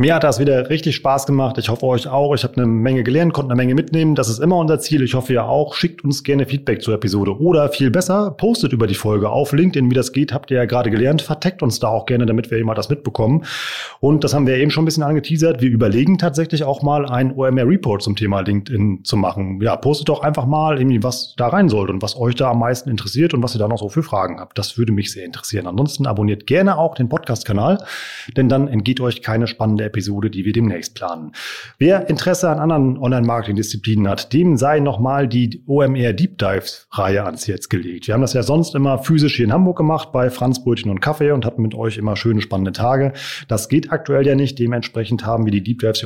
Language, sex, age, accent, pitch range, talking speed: German, male, 30-49, German, 115-145 Hz, 235 wpm